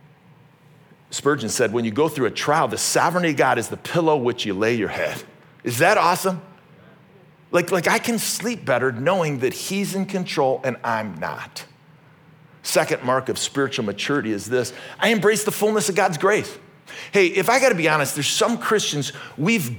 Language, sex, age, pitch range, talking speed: English, male, 40-59, 135-210 Hz, 185 wpm